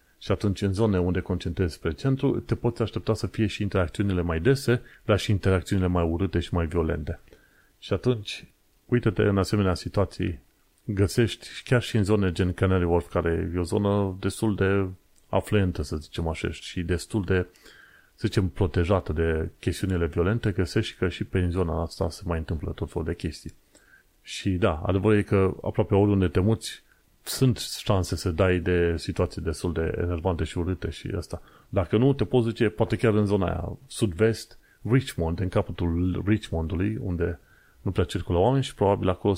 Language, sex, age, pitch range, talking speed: Romanian, male, 30-49, 90-110 Hz, 175 wpm